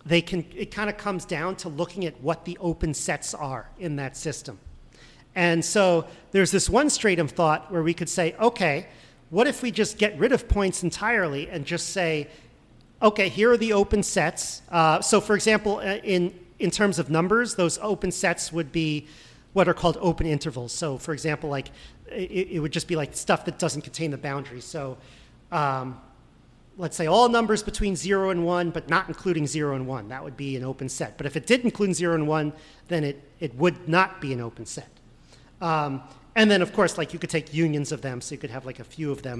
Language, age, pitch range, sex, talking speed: English, 40-59, 150-190 Hz, male, 220 wpm